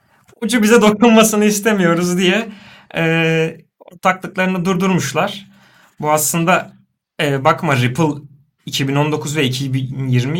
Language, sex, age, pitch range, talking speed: Turkish, male, 30-49, 130-175 Hz, 90 wpm